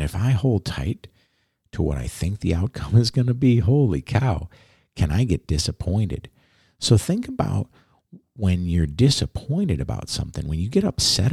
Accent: American